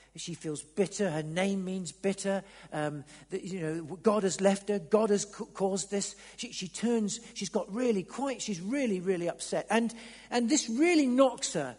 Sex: male